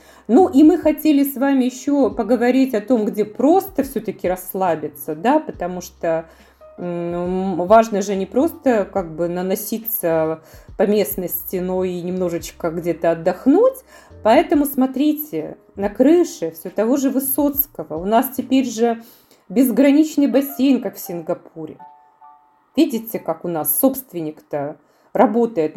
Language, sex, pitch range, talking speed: Russian, female, 175-270 Hz, 130 wpm